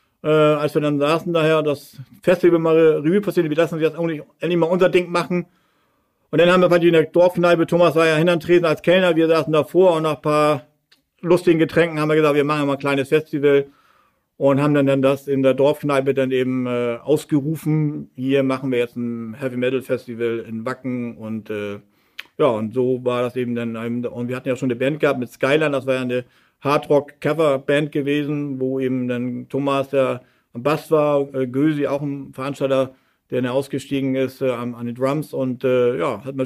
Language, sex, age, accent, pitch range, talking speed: German, male, 50-69, German, 130-155 Hz, 205 wpm